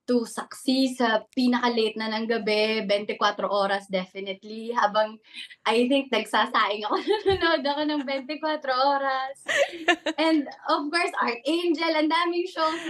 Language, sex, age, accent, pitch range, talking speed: English, female, 20-39, Filipino, 210-285 Hz, 130 wpm